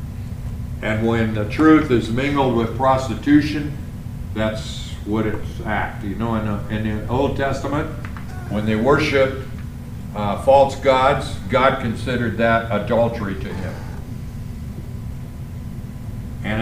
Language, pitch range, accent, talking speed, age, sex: English, 105-125 Hz, American, 110 wpm, 60-79, male